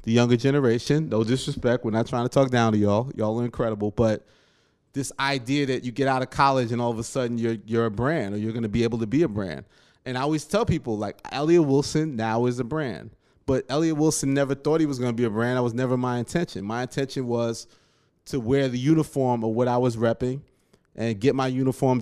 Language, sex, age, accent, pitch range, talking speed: English, male, 20-39, American, 120-150 Hz, 245 wpm